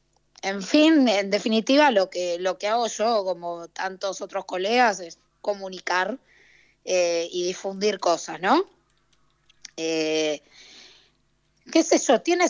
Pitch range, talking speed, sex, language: 175-235 Hz, 125 wpm, female, Spanish